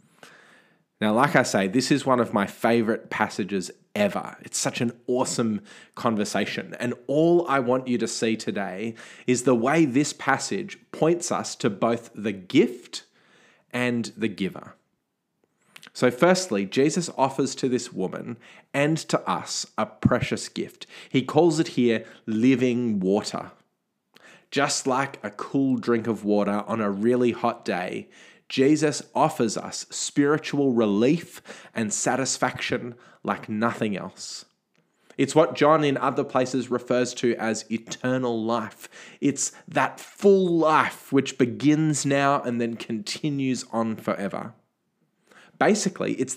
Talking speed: 135 wpm